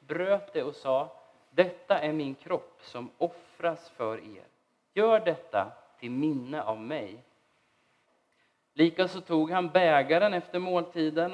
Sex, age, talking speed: male, 30-49, 125 wpm